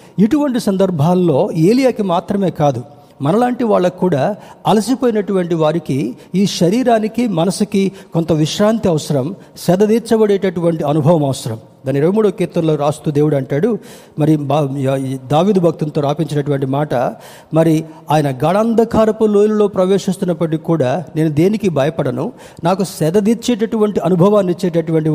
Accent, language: native, Telugu